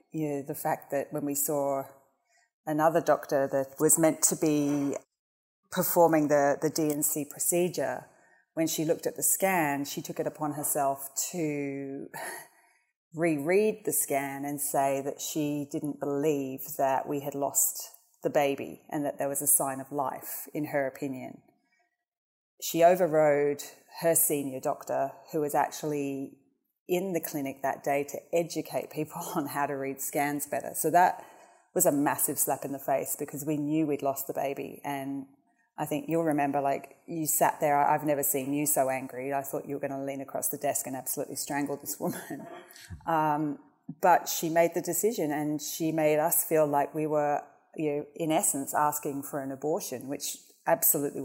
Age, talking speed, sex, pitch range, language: 30-49, 175 wpm, female, 140-160 Hz, English